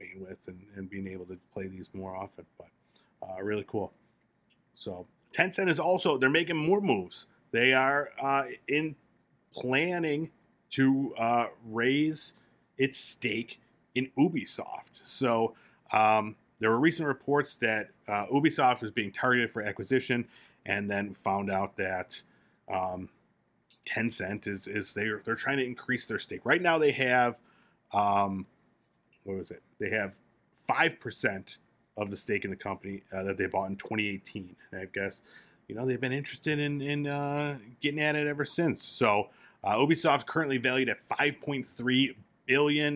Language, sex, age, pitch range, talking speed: English, male, 30-49, 105-145 Hz, 160 wpm